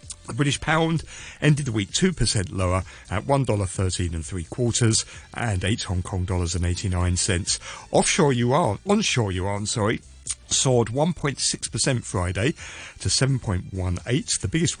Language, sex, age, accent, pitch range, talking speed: English, male, 50-69, British, 90-125 Hz, 135 wpm